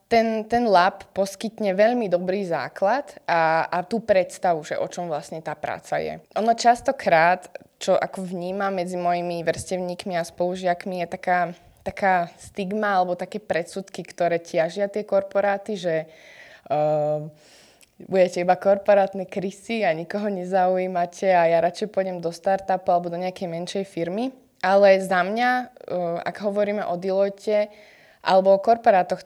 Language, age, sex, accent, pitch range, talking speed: Czech, 20-39, female, native, 175-205 Hz, 145 wpm